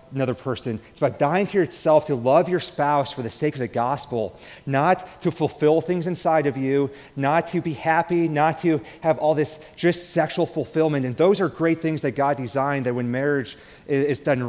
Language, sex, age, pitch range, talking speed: English, male, 30-49, 135-165 Hz, 205 wpm